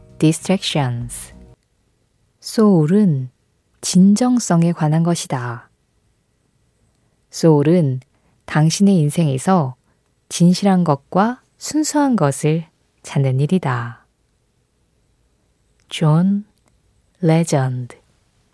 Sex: female